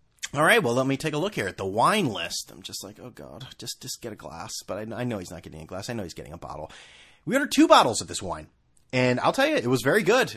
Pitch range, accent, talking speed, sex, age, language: 105-170 Hz, American, 305 wpm, male, 30-49, English